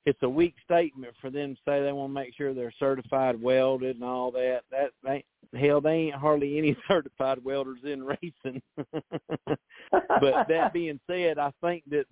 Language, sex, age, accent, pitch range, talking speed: English, male, 50-69, American, 130-160 Hz, 180 wpm